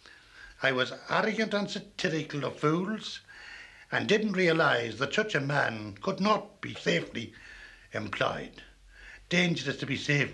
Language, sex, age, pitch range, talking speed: English, male, 60-79, 140-195 Hz, 135 wpm